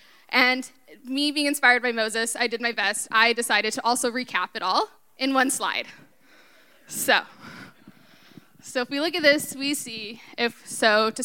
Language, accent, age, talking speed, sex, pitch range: English, American, 10-29, 170 wpm, female, 210-255 Hz